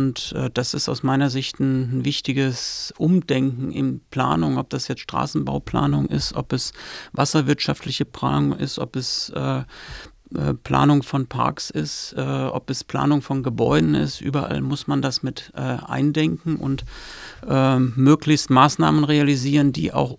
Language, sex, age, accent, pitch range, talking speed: English, male, 40-59, German, 130-145 Hz, 135 wpm